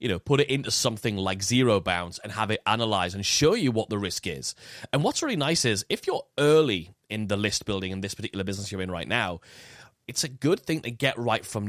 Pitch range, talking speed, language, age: 100-130 Hz, 245 wpm, English, 30-49